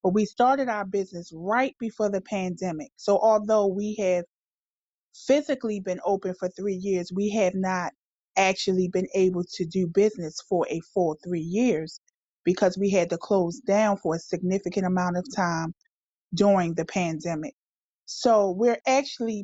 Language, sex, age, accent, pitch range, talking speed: English, female, 30-49, American, 180-220 Hz, 155 wpm